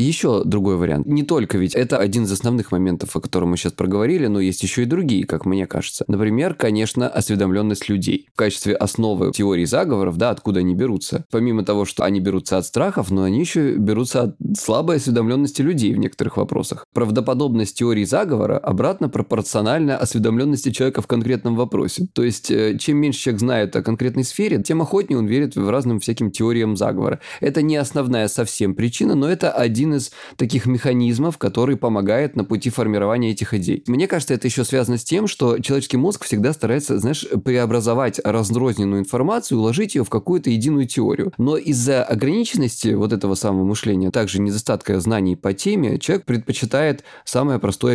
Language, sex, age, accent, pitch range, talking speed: Russian, male, 20-39, native, 100-130 Hz, 175 wpm